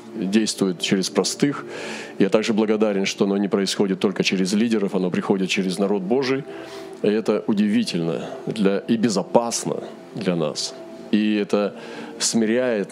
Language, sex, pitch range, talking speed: Russian, male, 95-130 Hz, 135 wpm